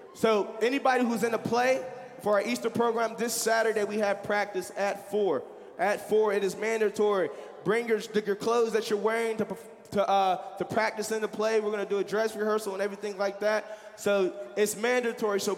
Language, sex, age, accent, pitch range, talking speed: English, male, 20-39, American, 195-245 Hz, 195 wpm